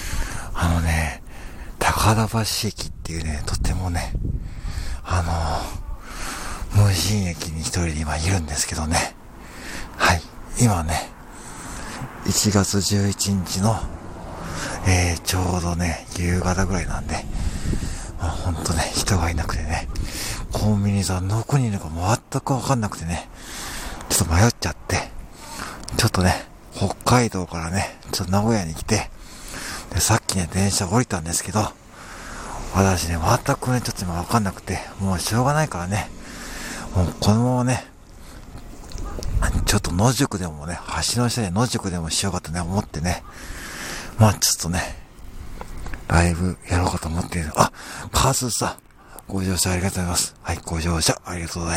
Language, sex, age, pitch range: Japanese, male, 50-69, 85-105 Hz